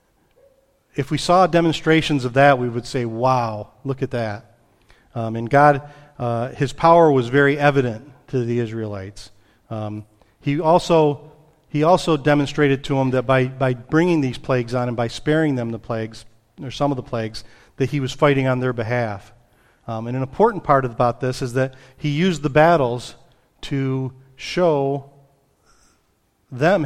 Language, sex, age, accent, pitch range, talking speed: English, male, 40-59, American, 120-145 Hz, 165 wpm